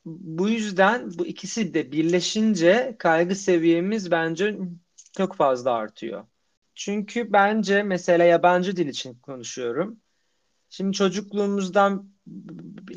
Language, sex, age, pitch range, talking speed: Turkish, male, 40-59, 155-190 Hz, 95 wpm